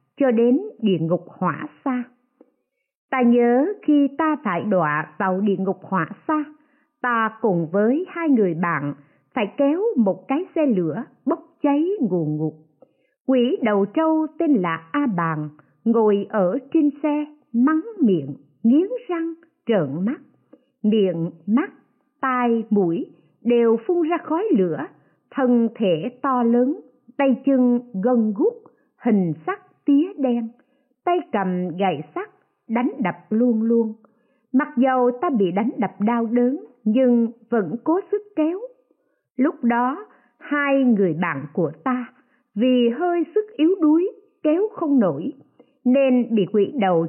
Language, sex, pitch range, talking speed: Vietnamese, female, 205-295 Hz, 140 wpm